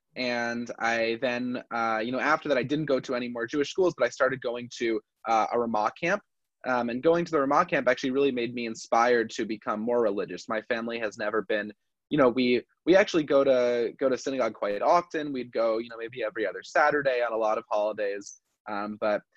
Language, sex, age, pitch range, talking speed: English, male, 20-39, 115-135 Hz, 225 wpm